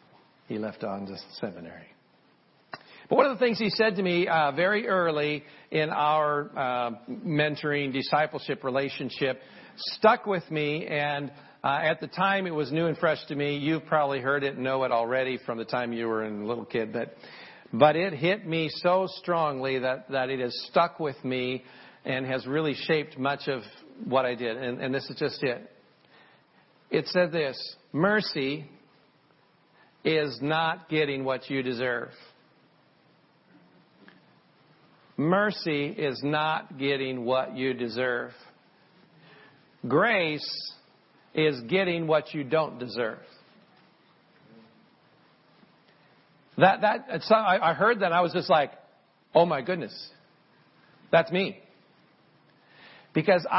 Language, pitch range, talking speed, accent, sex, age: English, 130-170 Hz, 140 wpm, American, male, 50-69